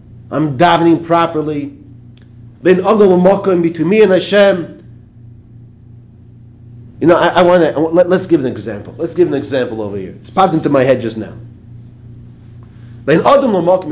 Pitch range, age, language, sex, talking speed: 115-175 Hz, 40-59, English, male, 140 wpm